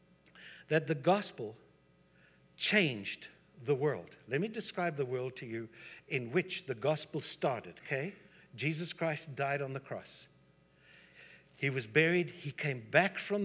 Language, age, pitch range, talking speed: English, 60-79, 125-175 Hz, 145 wpm